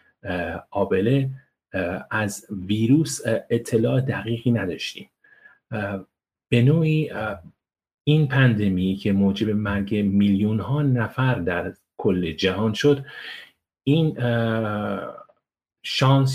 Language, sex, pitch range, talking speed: English, male, 100-135 Hz, 80 wpm